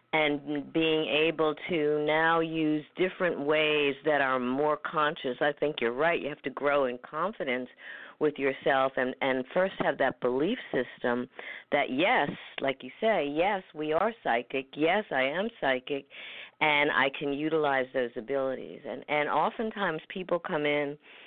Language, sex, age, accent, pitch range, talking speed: English, female, 50-69, American, 125-155 Hz, 160 wpm